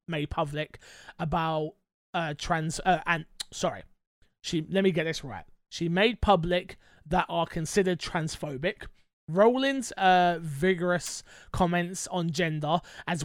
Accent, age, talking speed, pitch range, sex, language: British, 20-39, 120 wpm, 155-190 Hz, male, English